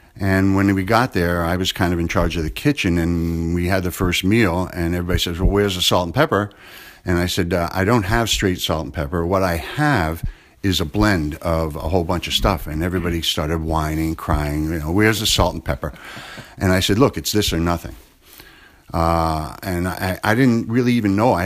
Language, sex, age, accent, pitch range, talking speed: English, male, 50-69, American, 85-100 Hz, 225 wpm